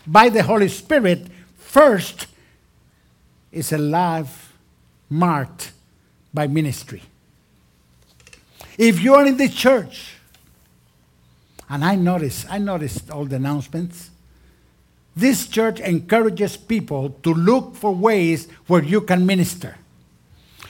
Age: 60-79